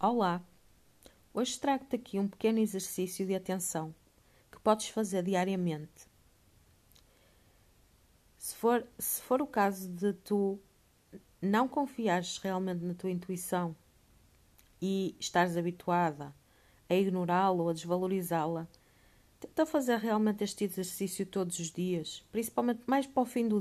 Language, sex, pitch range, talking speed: Portuguese, female, 170-215 Hz, 120 wpm